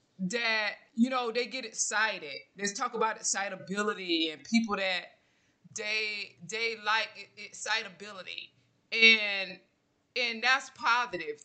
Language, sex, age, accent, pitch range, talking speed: English, female, 20-39, American, 195-235 Hz, 110 wpm